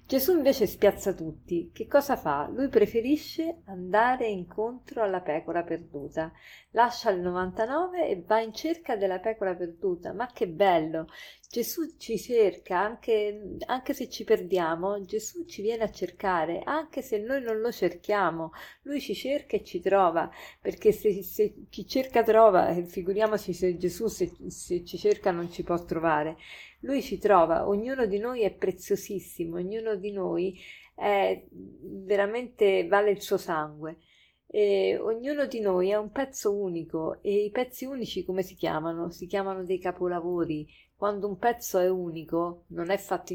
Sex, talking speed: female, 155 wpm